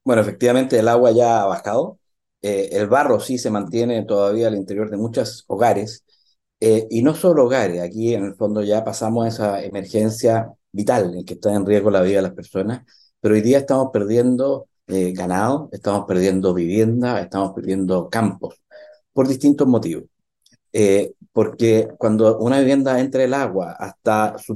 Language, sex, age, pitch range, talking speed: Spanish, male, 50-69, 105-120 Hz, 175 wpm